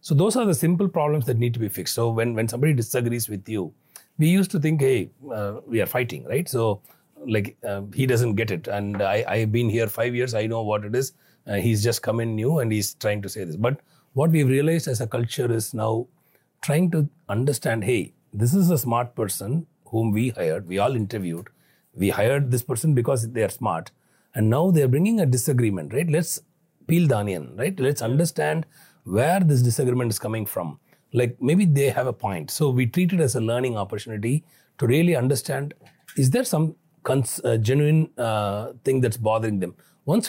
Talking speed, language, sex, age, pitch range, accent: 205 wpm, English, male, 40-59, 115-155 Hz, Indian